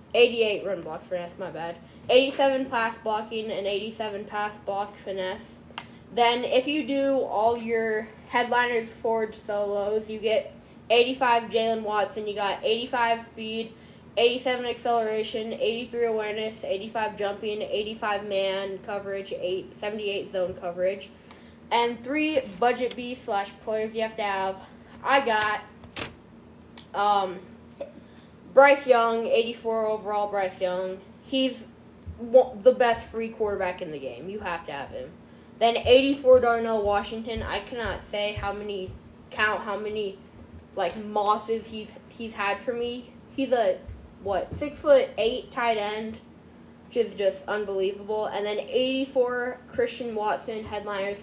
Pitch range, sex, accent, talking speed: 200-240 Hz, female, American, 135 wpm